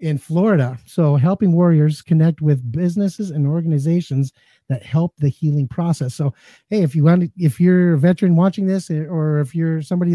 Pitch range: 140-175 Hz